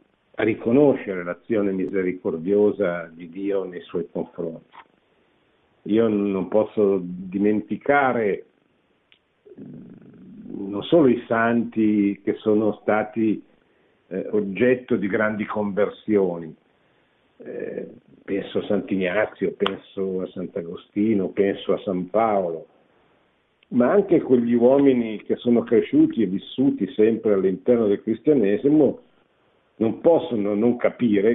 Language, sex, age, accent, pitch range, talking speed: Italian, male, 50-69, native, 100-125 Hz, 100 wpm